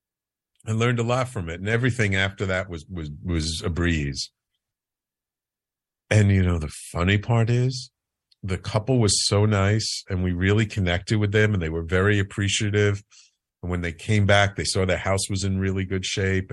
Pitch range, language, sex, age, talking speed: 90-120 Hz, English, male, 50-69, 190 wpm